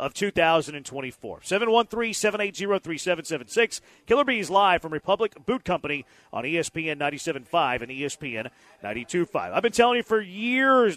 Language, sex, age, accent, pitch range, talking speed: English, male, 40-59, American, 160-210 Hz, 125 wpm